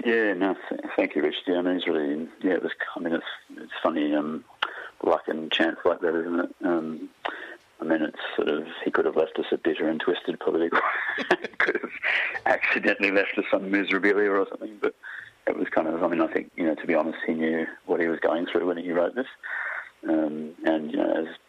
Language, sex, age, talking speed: English, male, 30-49, 225 wpm